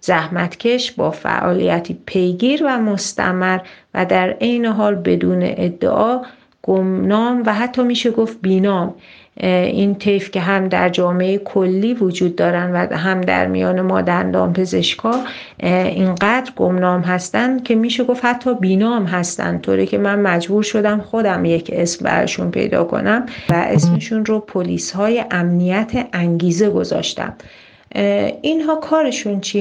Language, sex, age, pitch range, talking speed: Persian, female, 40-59, 185-235 Hz, 130 wpm